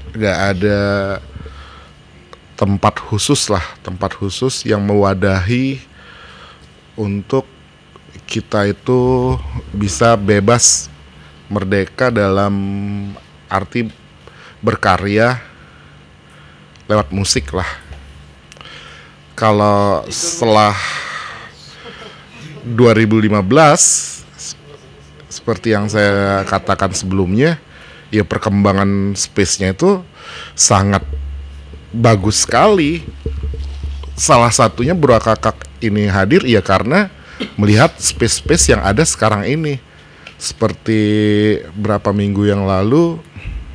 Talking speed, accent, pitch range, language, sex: 75 wpm, native, 75-110 Hz, Indonesian, male